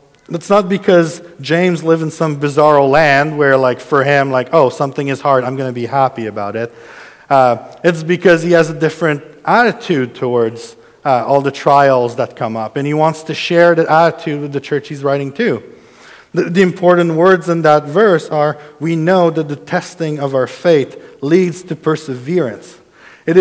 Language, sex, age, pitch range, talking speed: English, male, 40-59, 140-170 Hz, 190 wpm